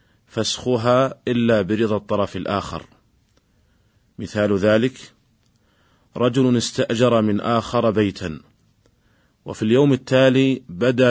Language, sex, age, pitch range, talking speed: Arabic, male, 30-49, 105-120 Hz, 85 wpm